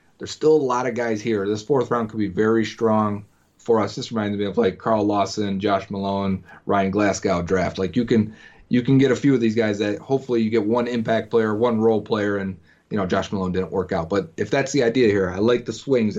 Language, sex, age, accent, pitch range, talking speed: English, male, 30-49, American, 105-135 Hz, 250 wpm